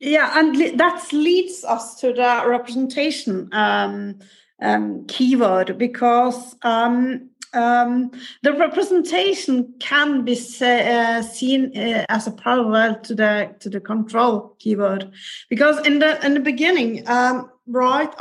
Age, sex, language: 40-59, female, English